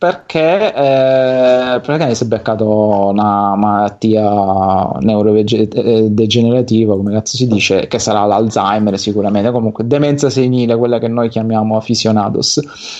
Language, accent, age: Italian, native, 20-39